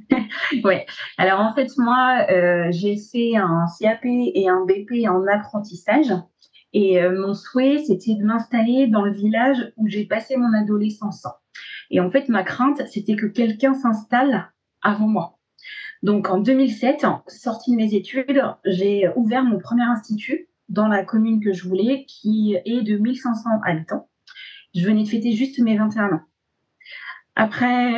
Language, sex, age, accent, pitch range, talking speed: French, female, 30-49, French, 195-240 Hz, 155 wpm